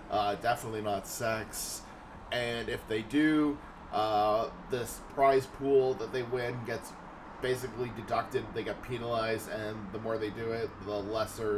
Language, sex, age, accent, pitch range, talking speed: English, male, 20-39, American, 100-125 Hz, 150 wpm